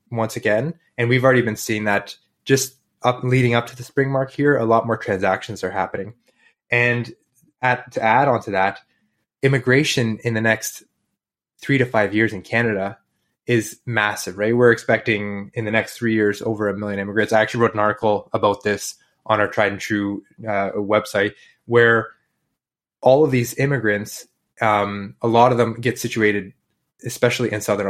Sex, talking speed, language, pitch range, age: male, 175 wpm, English, 105-125 Hz, 20-39